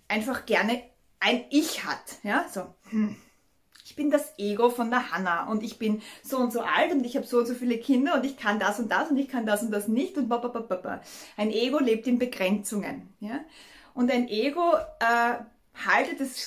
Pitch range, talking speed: 210-270 Hz, 210 wpm